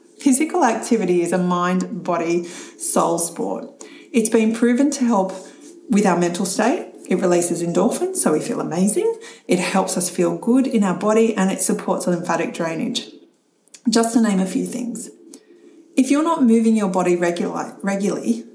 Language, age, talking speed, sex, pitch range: English, 30-49, 155 wpm, female, 190-280 Hz